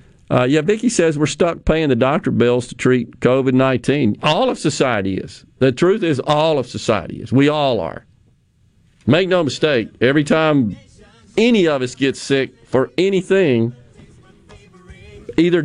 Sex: male